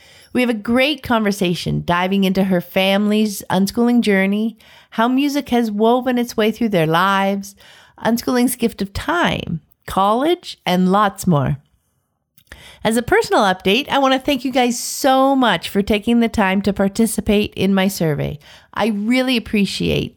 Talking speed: 155 wpm